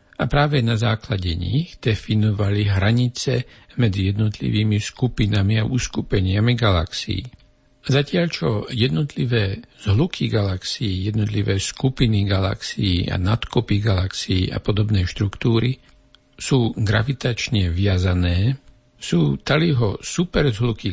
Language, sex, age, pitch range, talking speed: Slovak, male, 60-79, 100-125 Hz, 95 wpm